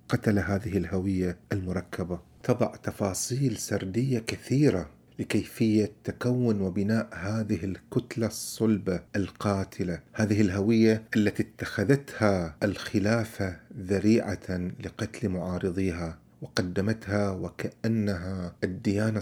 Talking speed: 80 wpm